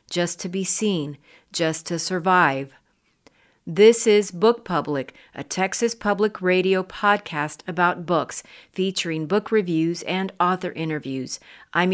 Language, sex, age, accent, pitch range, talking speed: English, female, 40-59, American, 160-200 Hz, 125 wpm